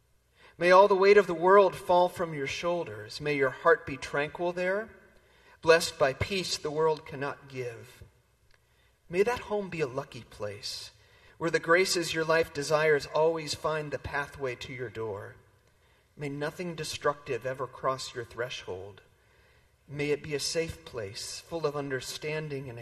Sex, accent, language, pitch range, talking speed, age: male, American, English, 125-165 Hz, 160 wpm, 40-59